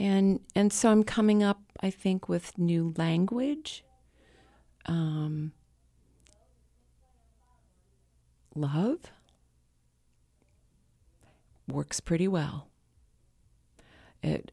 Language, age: English, 40-59